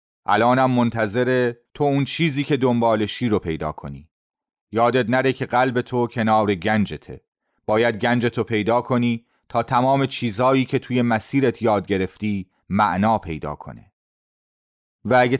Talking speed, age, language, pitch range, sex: 135 wpm, 30-49, Persian, 105-135 Hz, male